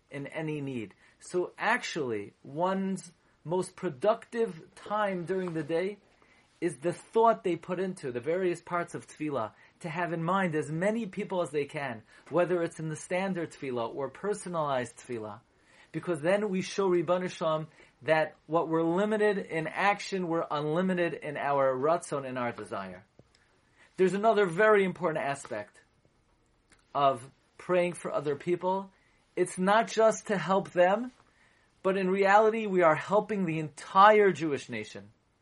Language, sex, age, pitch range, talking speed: English, male, 30-49, 145-190 Hz, 145 wpm